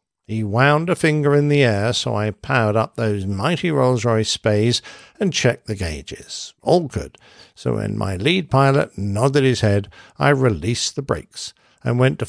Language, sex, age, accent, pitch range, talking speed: English, male, 60-79, British, 110-145 Hz, 175 wpm